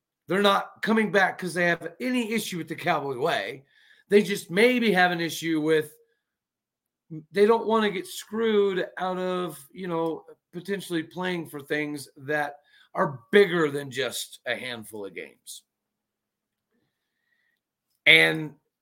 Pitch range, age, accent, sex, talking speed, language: 155-215 Hz, 40-59, American, male, 140 wpm, English